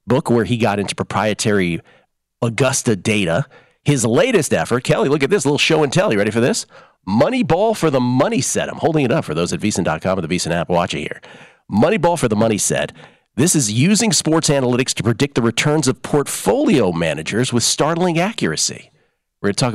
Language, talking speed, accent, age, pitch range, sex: English, 205 wpm, American, 40-59, 105-140 Hz, male